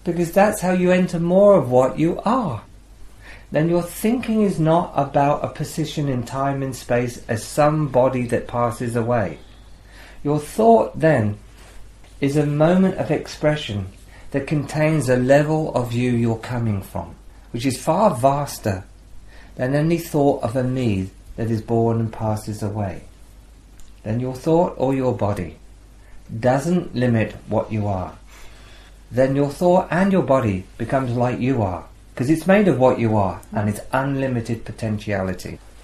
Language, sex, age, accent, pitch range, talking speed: English, male, 40-59, British, 105-150 Hz, 155 wpm